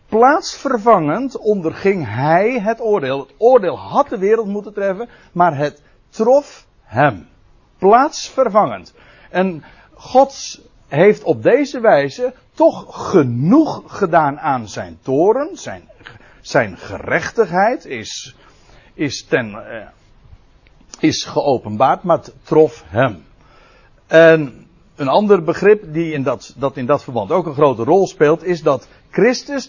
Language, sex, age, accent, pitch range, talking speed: Dutch, male, 60-79, Dutch, 125-205 Hz, 120 wpm